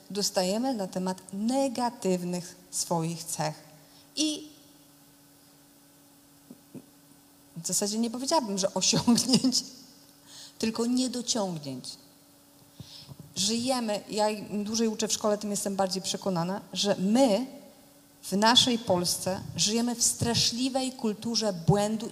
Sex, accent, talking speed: female, native, 95 wpm